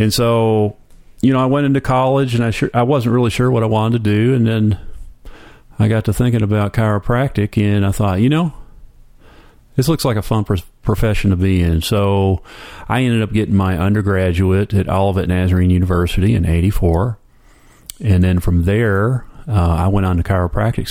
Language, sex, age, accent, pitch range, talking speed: English, male, 40-59, American, 95-120 Hz, 190 wpm